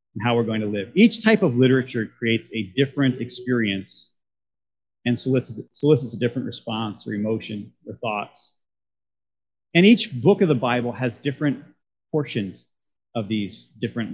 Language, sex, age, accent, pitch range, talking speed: English, male, 30-49, American, 110-155 Hz, 155 wpm